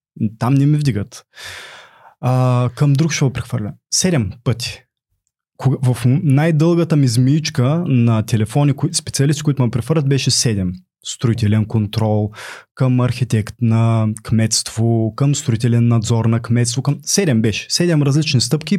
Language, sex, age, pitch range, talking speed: Bulgarian, male, 20-39, 115-155 Hz, 135 wpm